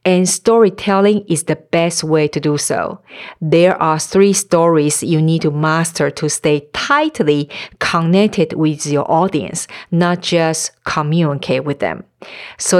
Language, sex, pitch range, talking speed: English, female, 160-225 Hz, 140 wpm